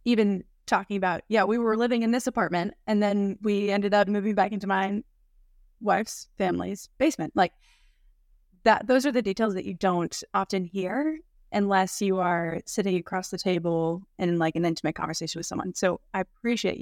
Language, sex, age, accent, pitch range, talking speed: English, female, 20-39, American, 175-215 Hz, 180 wpm